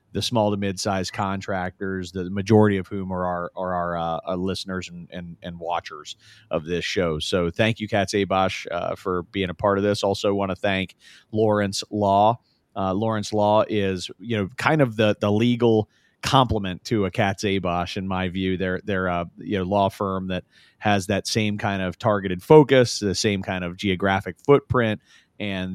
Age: 30-49